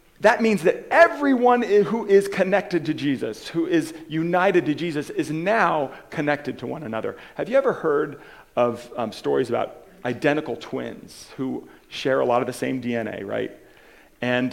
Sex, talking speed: male, 165 wpm